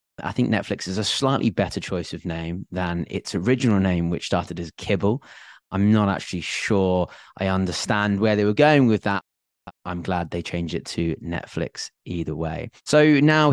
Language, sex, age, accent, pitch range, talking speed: English, male, 30-49, British, 90-115 Hz, 180 wpm